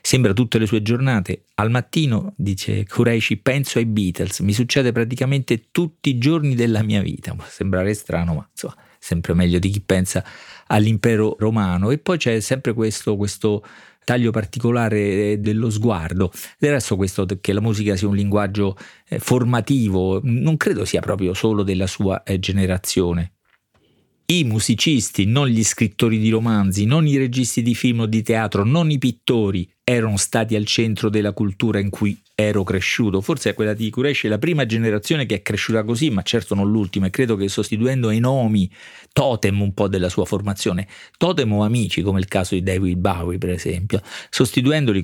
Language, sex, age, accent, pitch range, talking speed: Italian, male, 40-59, native, 95-120 Hz, 170 wpm